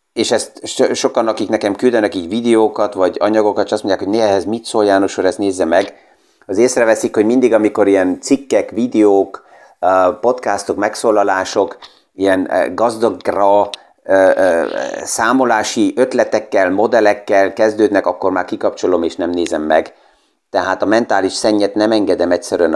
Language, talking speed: Hungarian, 130 wpm